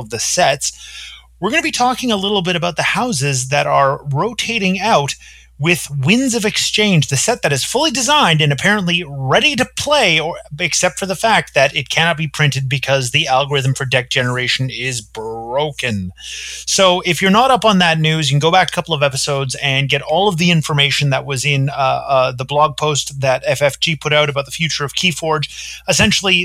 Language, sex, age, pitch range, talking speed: English, male, 30-49, 135-185 Hz, 205 wpm